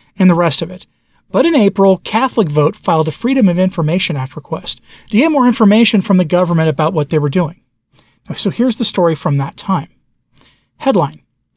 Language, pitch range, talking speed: English, 155-200 Hz, 190 wpm